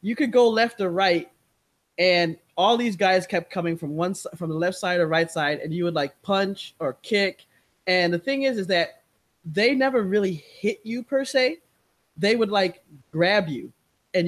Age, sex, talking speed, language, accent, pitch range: 20-39, male, 200 wpm, English, American, 170-220 Hz